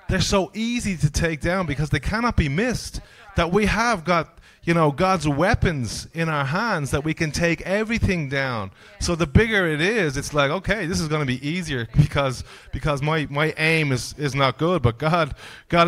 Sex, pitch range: male, 120-165 Hz